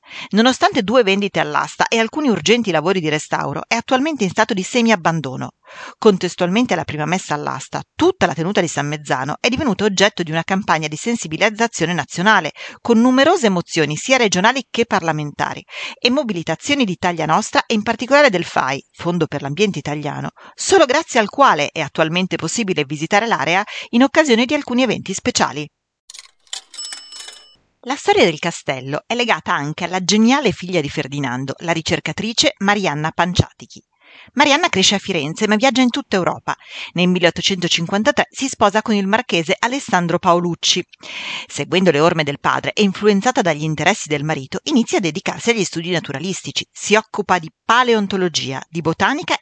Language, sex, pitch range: Italian, female, 165-230 Hz